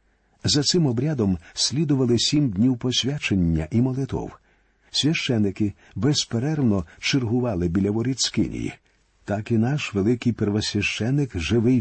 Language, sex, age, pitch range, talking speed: Ukrainian, male, 50-69, 105-135 Hz, 100 wpm